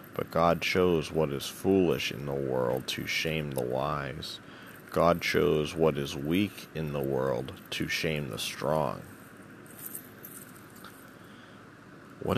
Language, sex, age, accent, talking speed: English, male, 30-49, American, 125 wpm